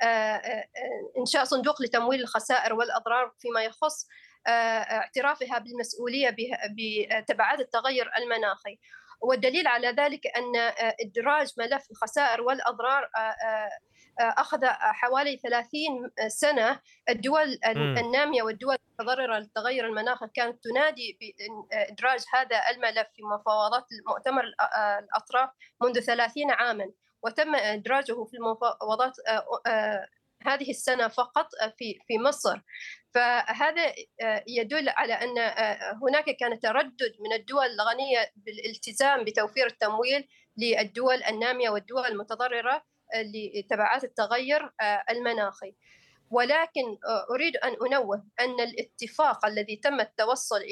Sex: female